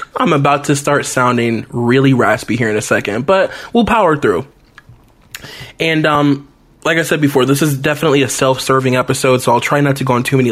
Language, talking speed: English, 205 wpm